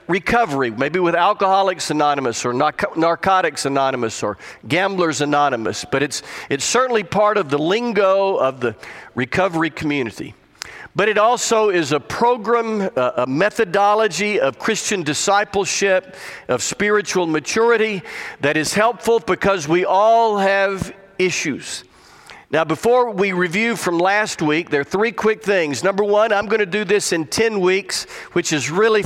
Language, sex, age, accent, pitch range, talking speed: English, male, 50-69, American, 165-215 Hz, 145 wpm